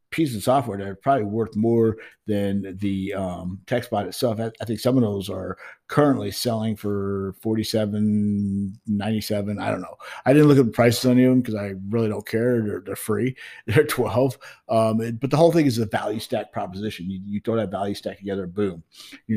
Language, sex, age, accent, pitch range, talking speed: English, male, 50-69, American, 100-125 Hz, 210 wpm